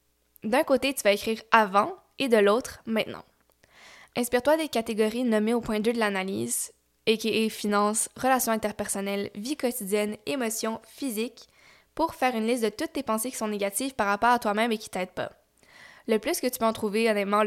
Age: 10-29